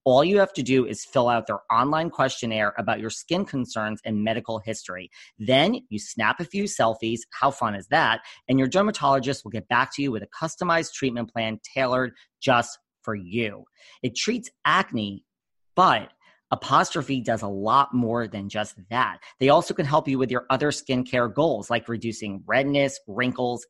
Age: 40-59